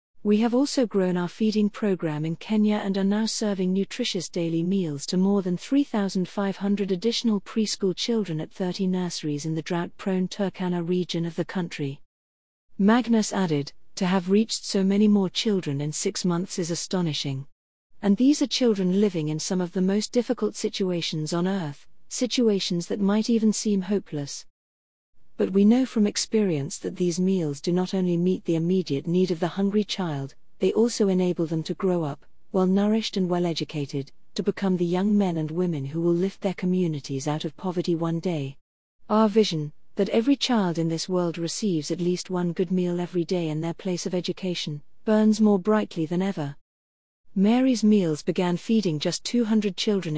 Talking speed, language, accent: 175 wpm, English, British